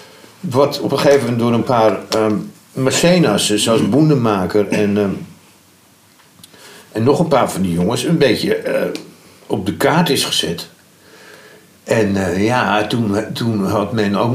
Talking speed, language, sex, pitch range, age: 145 wpm, Dutch, male, 100-135 Hz, 60-79